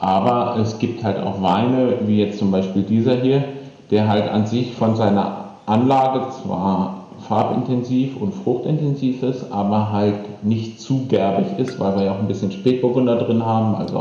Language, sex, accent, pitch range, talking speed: German, male, German, 100-120 Hz, 170 wpm